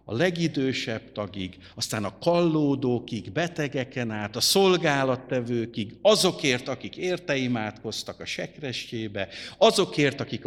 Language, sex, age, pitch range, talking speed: Hungarian, male, 50-69, 110-165 Hz, 95 wpm